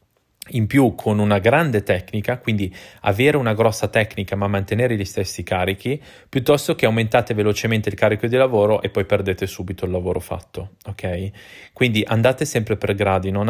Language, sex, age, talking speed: Italian, male, 30-49, 170 wpm